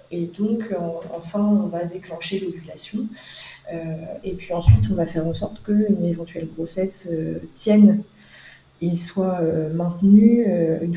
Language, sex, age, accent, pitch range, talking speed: French, female, 20-39, French, 170-200 Hz, 155 wpm